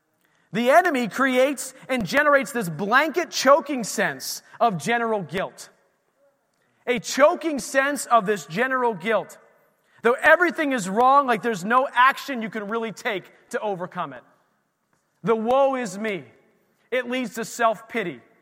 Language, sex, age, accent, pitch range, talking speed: English, male, 30-49, American, 185-250 Hz, 135 wpm